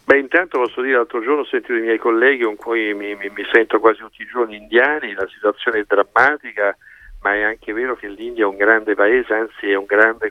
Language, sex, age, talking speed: Italian, male, 50-69, 235 wpm